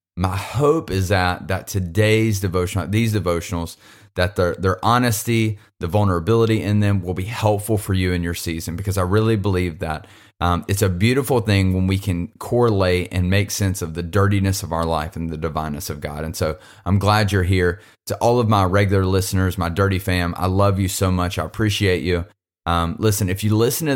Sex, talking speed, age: male, 205 wpm, 30-49